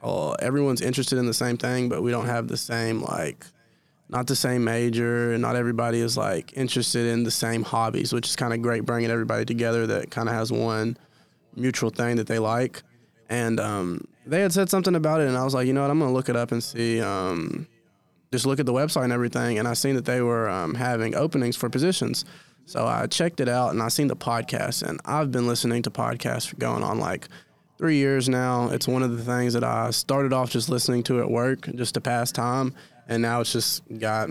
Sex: male